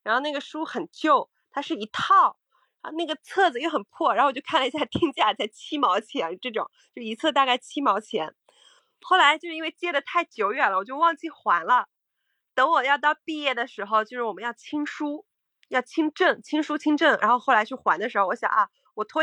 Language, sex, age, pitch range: Chinese, female, 20-39, 240-335 Hz